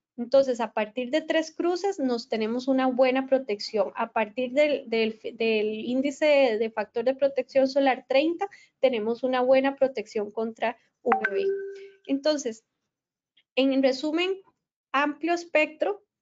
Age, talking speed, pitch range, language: 20-39, 125 wpm, 230-295 Hz, Spanish